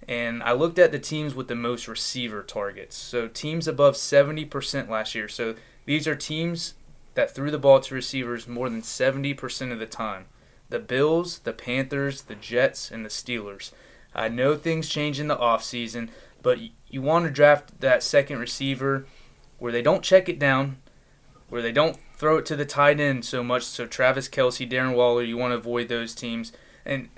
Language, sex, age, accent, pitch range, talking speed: English, male, 20-39, American, 120-140 Hz, 190 wpm